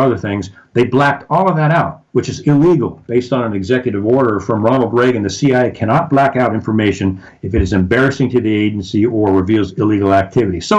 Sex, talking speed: male, 205 wpm